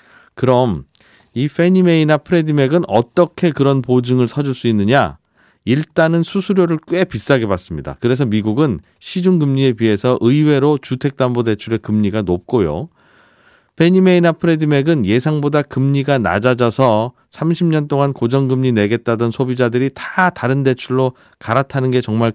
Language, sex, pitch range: Korean, male, 110-150 Hz